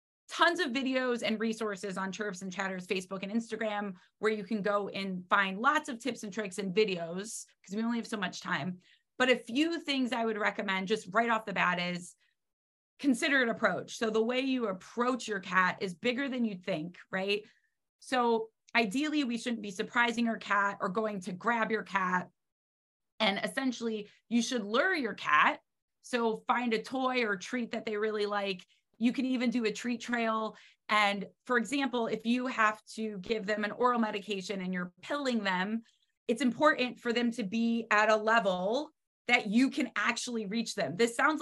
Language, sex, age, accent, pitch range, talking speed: English, female, 30-49, American, 205-245 Hz, 190 wpm